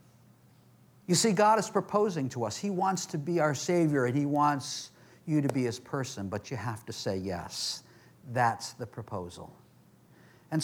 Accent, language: American, English